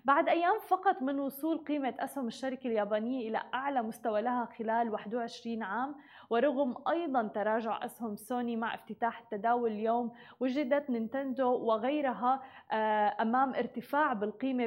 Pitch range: 220-260 Hz